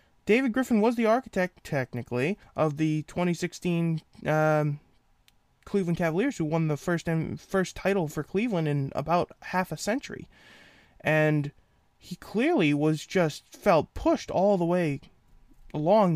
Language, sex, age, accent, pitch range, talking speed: English, male, 20-39, American, 145-195 Hz, 135 wpm